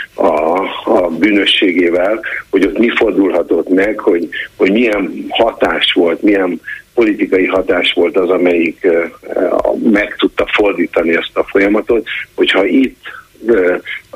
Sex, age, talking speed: male, 60-79, 125 wpm